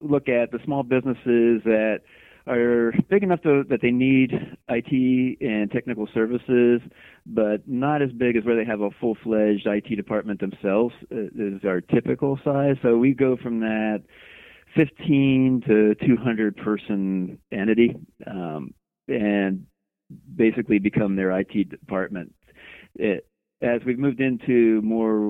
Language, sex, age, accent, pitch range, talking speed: English, male, 40-59, American, 100-120 Hz, 135 wpm